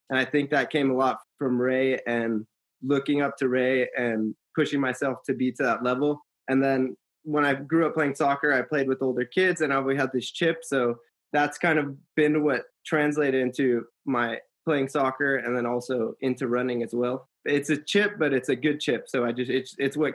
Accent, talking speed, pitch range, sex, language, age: American, 215 wpm, 130-155 Hz, male, English, 20-39